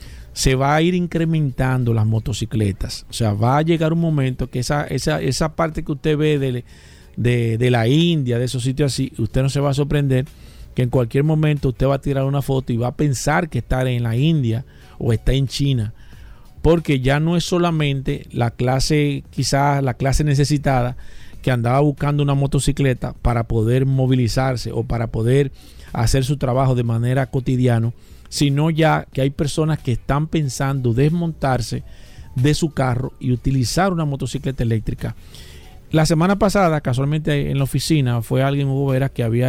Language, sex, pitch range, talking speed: Spanish, male, 120-150 Hz, 175 wpm